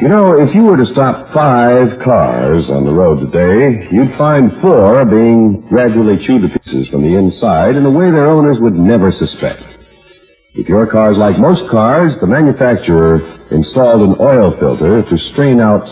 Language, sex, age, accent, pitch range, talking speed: English, male, 50-69, American, 85-145 Hz, 180 wpm